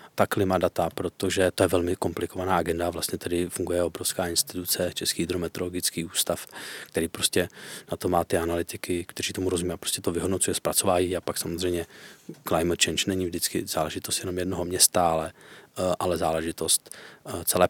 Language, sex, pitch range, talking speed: Czech, male, 90-100 Hz, 155 wpm